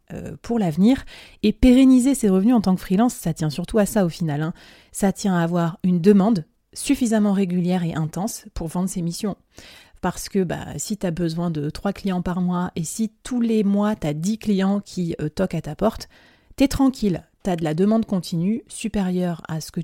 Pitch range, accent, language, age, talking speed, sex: 170-205 Hz, French, French, 30-49, 220 wpm, female